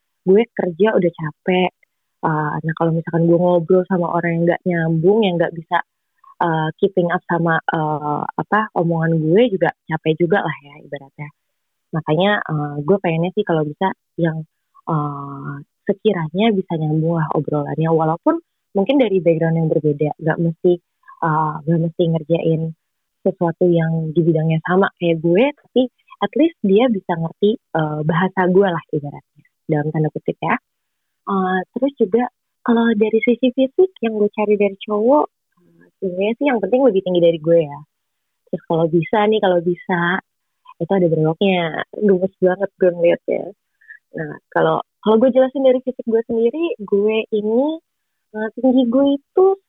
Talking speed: 155 wpm